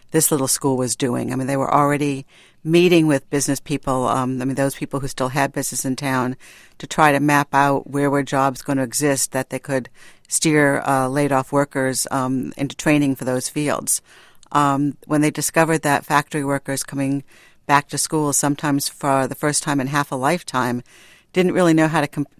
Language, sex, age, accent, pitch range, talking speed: English, female, 60-79, American, 135-165 Hz, 205 wpm